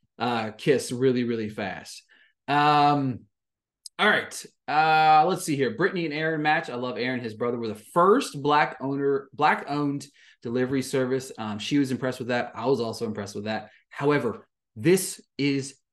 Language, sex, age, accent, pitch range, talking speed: English, male, 30-49, American, 120-180 Hz, 170 wpm